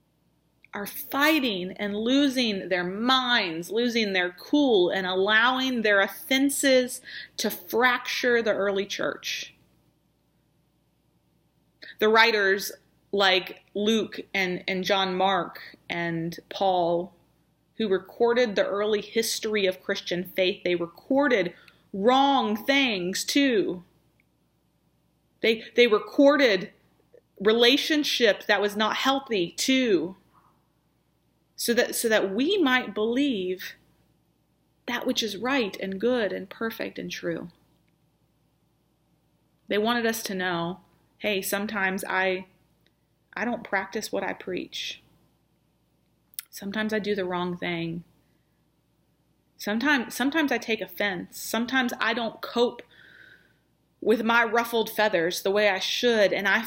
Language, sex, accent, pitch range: English, female, American, 190-245 Hz